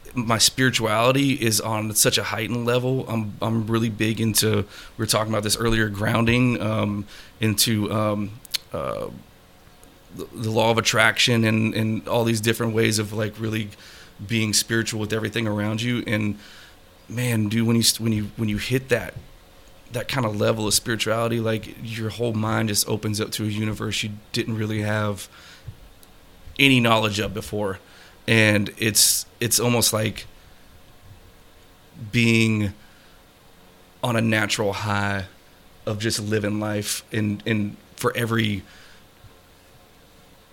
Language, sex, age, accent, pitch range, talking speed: English, male, 30-49, American, 105-115 Hz, 140 wpm